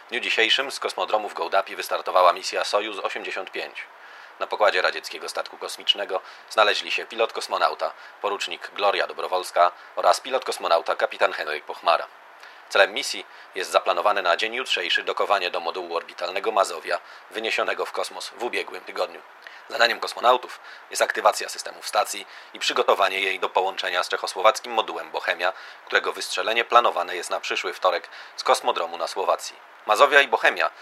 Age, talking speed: 40-59, 145 wpm